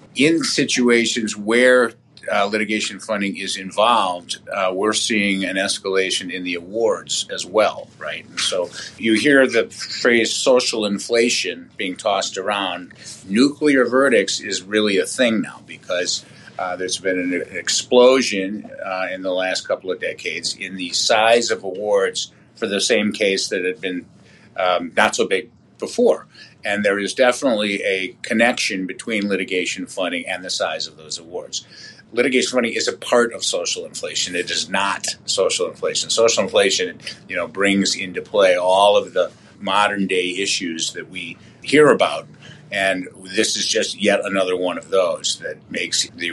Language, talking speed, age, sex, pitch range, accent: English, 160 wpm, 50-69, male, 95-150 Hz, American